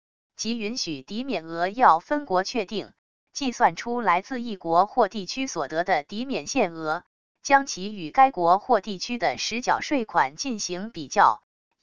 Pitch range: 175-250 Hz